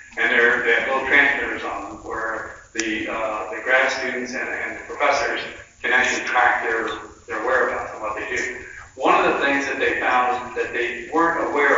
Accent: American